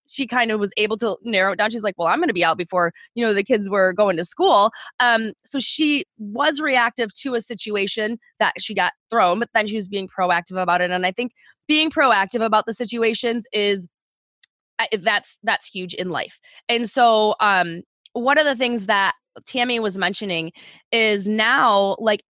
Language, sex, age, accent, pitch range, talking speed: English, female, 20-39, American, 200-260 Hz, 200 wpm